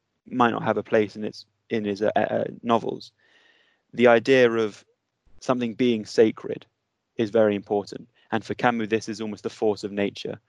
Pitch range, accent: 105-115 Hz, British